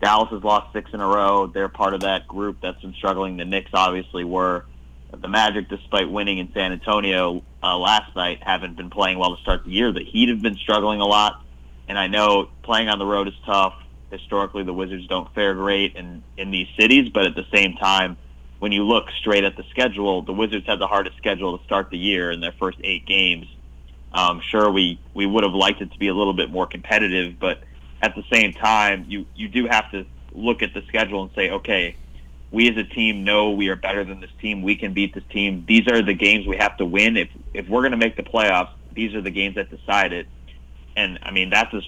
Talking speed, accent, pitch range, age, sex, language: 240 wpm, American, 90-105 Hz, 30-49, male, English